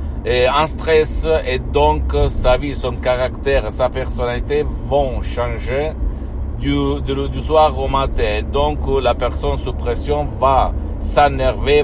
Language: Italian